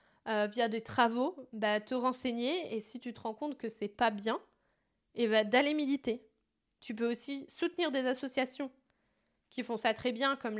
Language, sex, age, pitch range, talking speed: French, female, 20-39, 215-265 Hz, 185 wpm